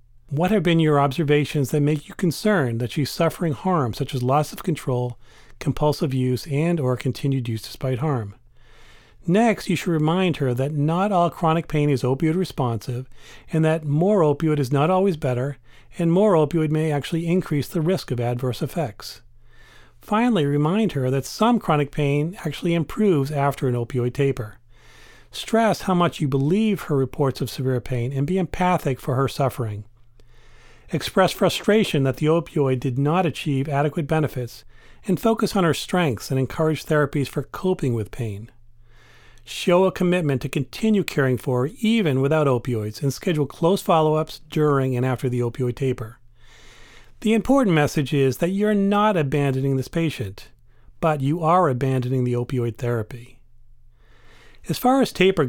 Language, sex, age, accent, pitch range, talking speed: English, male, 40-59, American, 125-170 Hz, 165 wpm